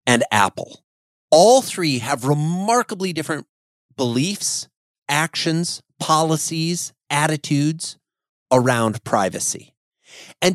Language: English